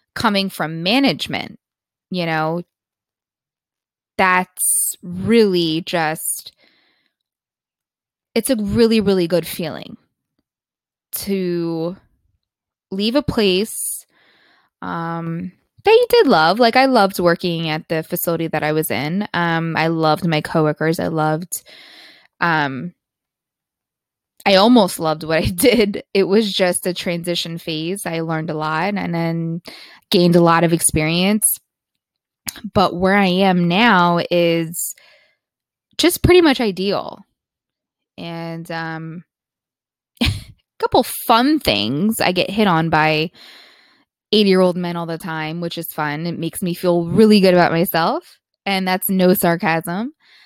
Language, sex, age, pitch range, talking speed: English, female, 20-39, 165-200 Hz, 130 wpm